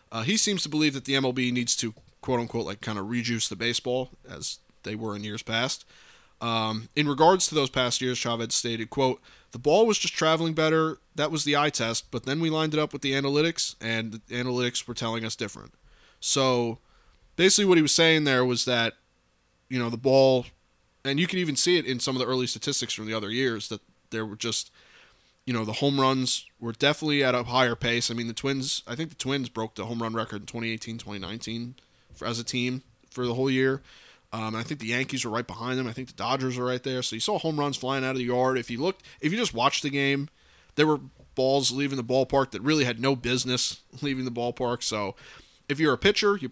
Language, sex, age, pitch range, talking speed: English, male, 20-39, 115-145 Hz, 235 wpm